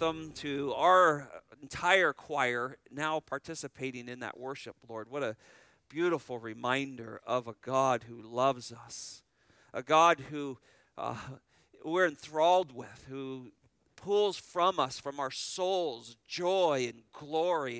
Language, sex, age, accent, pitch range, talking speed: English, male, 50-69, American, 120-150 Hz, 125 wpm